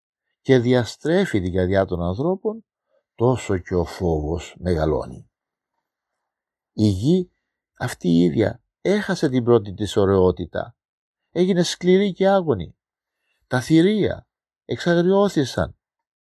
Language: Greek